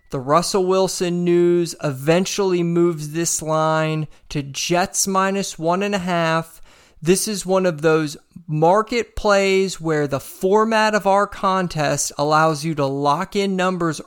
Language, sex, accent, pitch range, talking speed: English, male, American, 155-195 Hz, 145 wpm